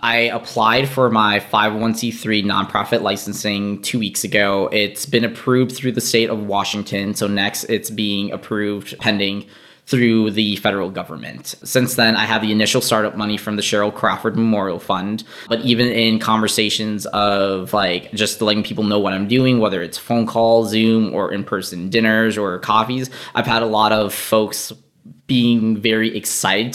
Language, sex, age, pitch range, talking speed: English, male, 10-29, 105-115 Hz, 165 wpm